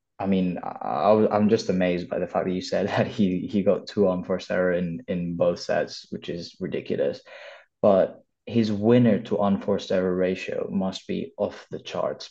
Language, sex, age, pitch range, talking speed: English, male, 20-39, 90-100 Hz, 185 wpm